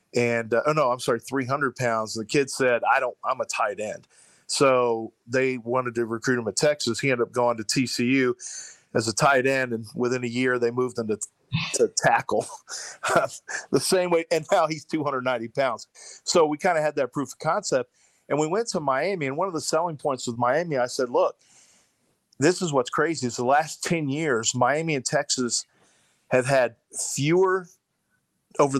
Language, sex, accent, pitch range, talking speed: English, male, American, 120-150 Hz, 200 wpm